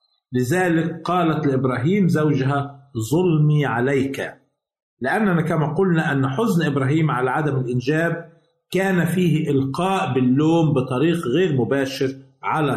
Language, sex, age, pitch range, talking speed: Arabic, male, 50-69, 135-170 Hz, 110 wpm